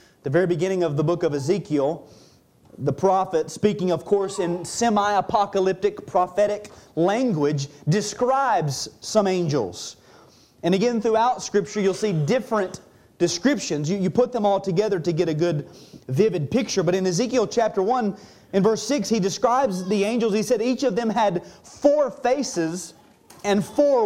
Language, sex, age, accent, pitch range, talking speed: English, male, 30-49, American, 165-220 Hz, 155 wpm